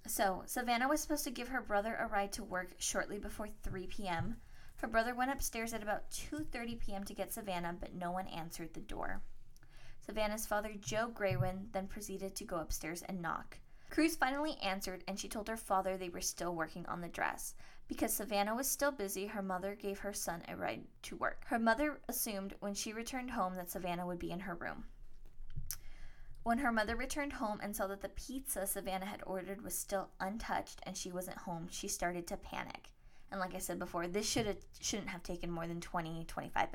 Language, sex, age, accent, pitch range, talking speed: English, female, 20-39, American, 185-230 Hz, 200 wpm